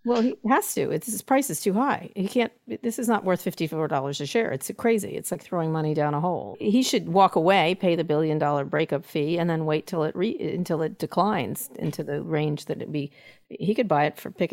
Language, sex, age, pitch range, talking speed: English, female, 40-59, 145-180 Hz, 250 wpm